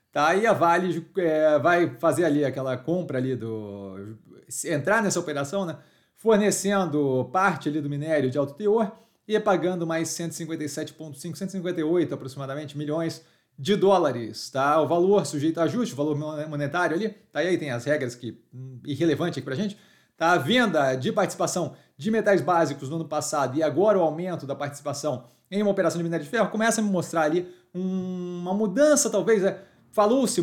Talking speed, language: 175 wpm, Portuguese